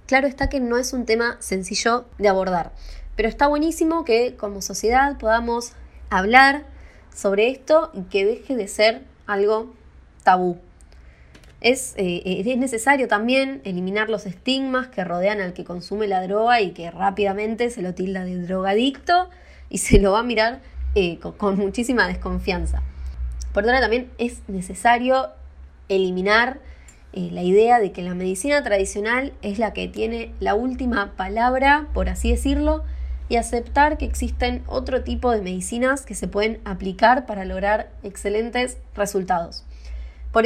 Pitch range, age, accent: 190-250 Hz, 20-39, Argentinian